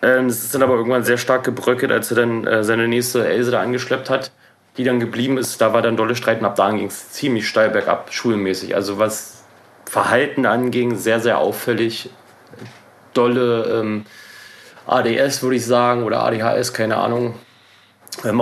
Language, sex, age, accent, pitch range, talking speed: German, male, 30-49, German, 110-125 Hz, 175 wpm